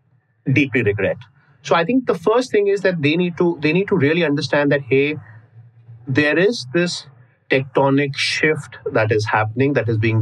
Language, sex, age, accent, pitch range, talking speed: English, male, 30-49, Indian, 120-145 Hz, 180 wpm